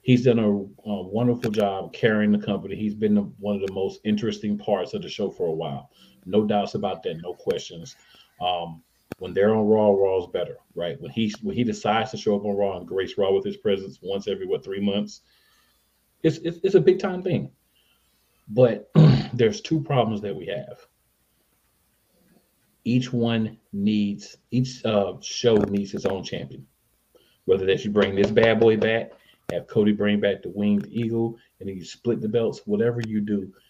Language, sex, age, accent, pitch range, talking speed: English, male, 40-59, American, 95-125 Hz, 190 wpm